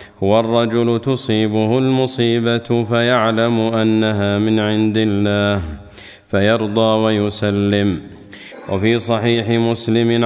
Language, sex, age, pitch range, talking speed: Arabic, male, 40-59, 105-120 Hz, 80 wpm